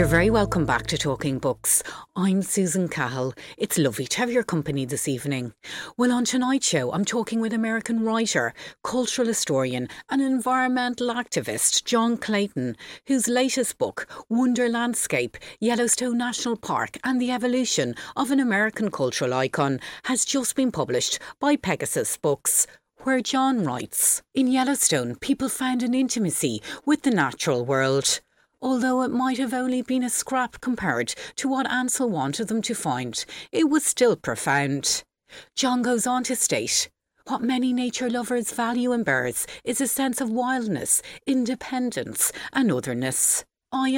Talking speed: 150 wpm